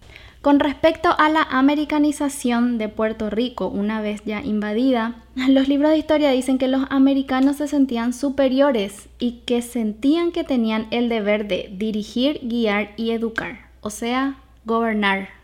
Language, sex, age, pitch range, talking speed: Spanish, female, 10-29, 215-270 Hz, 150 wpm